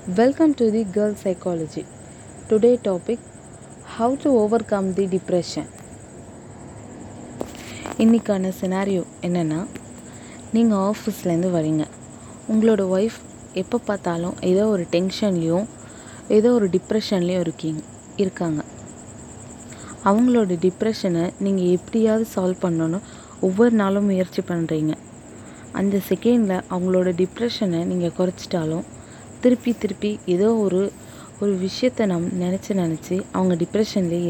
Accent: native